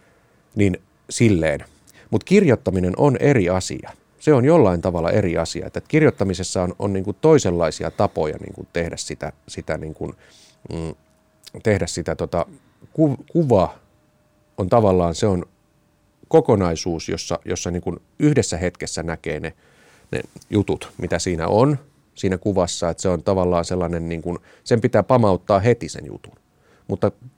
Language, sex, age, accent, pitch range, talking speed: Finnish, male, 30-49, native, 85-110 Hz, 140 wpm